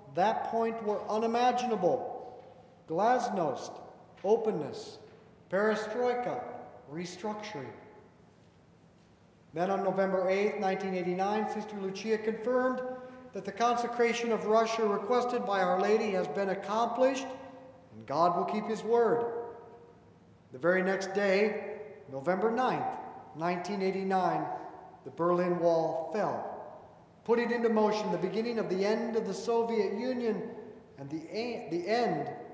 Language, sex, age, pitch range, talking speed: English, male, 50-69, 185-230 Hz, 115 wpm